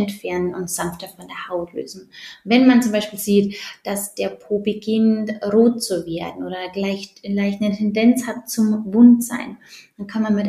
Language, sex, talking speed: German, female, 170 wpm